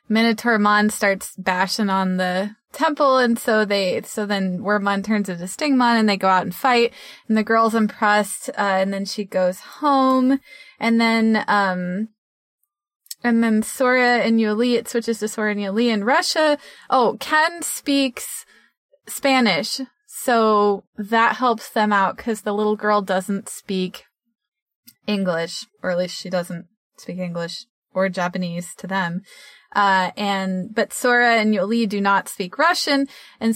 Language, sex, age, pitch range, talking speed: English, female, 20-39, 195-230 Hz, 155 wpm